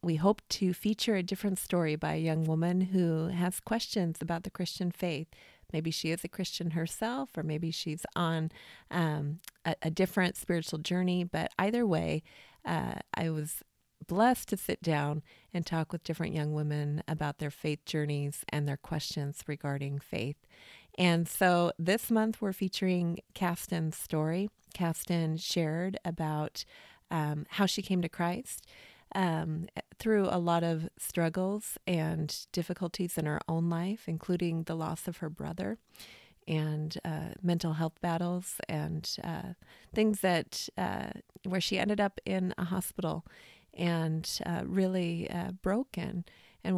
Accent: American